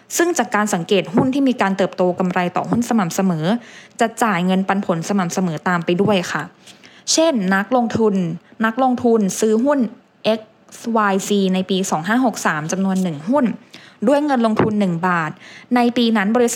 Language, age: English, 20-39